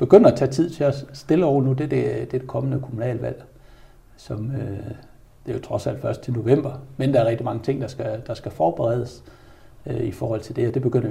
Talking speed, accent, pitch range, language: 215 wpm, native, 110-130 Hz, Danish